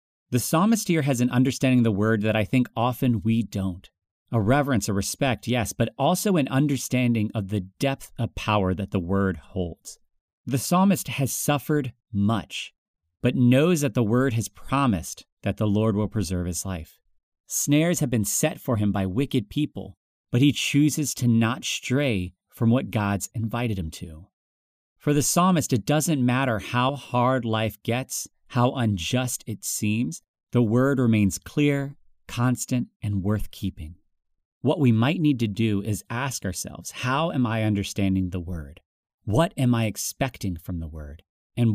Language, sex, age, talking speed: English, male, 40-59, 170 wpm